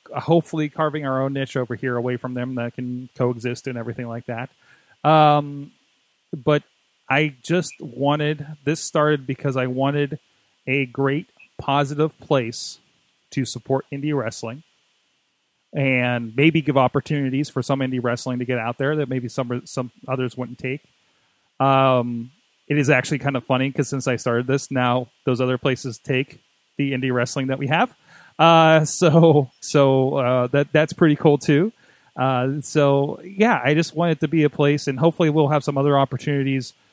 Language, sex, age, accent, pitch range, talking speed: English, male, 30-49, American, 125-150 Hz, 170 wpm